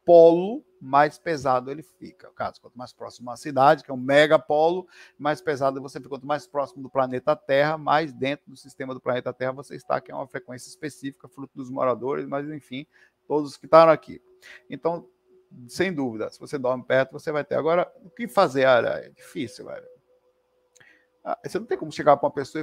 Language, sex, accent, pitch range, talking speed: Portuguese, male, Brazilian, 135-185 Hz, 195 wpm